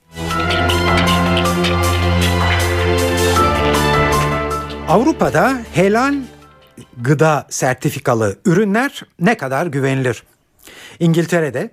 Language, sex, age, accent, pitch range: Turkish, male, 60-79, native, 110-170 Hz